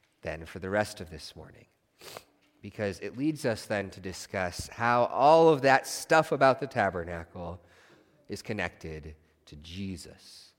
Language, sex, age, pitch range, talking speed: English, male, 30-49, 95-120 Hz, 145 wpm